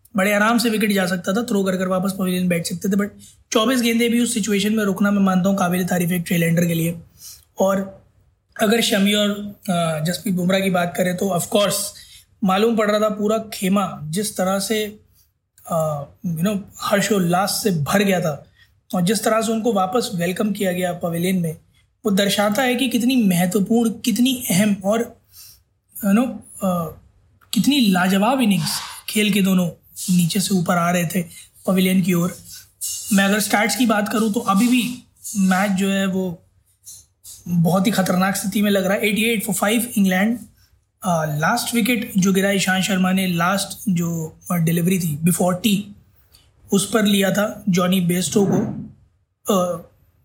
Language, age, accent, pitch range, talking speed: Hindi, 20-39, native, 175-210 Hz, 170 wpm